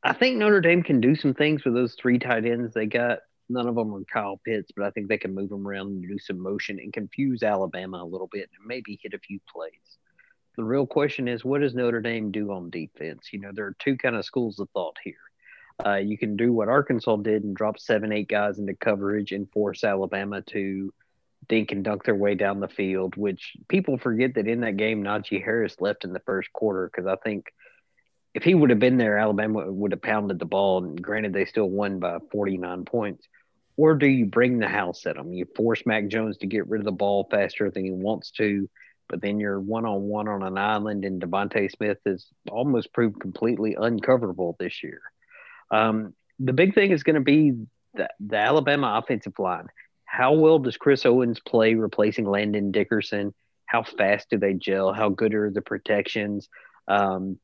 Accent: American